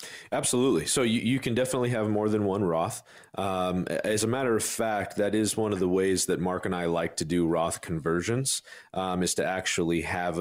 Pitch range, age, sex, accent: 85-110 Hz, 40-59, male, American